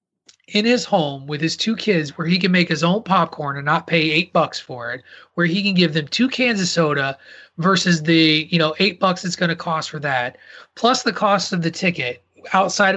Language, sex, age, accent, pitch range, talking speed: English, male, 30-49, American, 155-200 Hz, 225 wpm